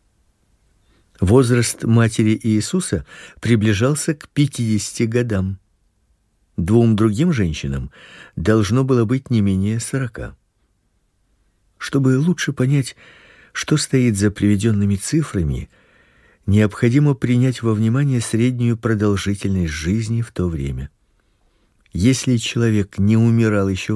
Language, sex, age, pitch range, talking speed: Russian, male, 50-69, 100-130 Hz, 100 wpm